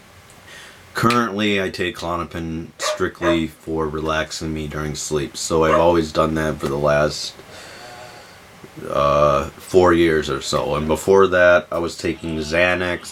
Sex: male